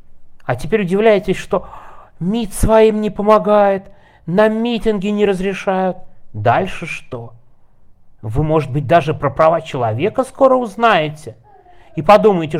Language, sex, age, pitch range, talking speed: Russian, male, 30-49, 135-180 Hz, 120 wpm